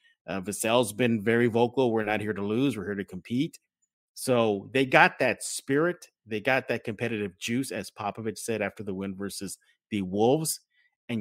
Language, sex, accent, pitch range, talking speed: English, male, American, 110-150 Hz, 180 wpm